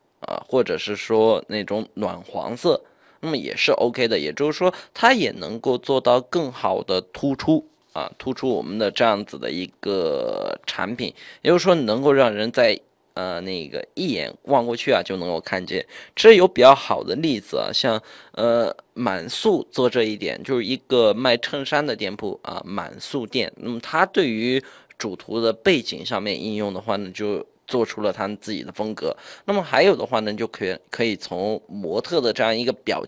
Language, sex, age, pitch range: Chinese, male, 20-39, 105-180 Hz